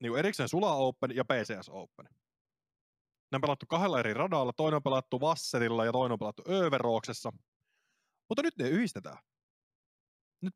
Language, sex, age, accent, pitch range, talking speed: Finnish, male, 20-39, native, 120-170 Hz, 155 wpm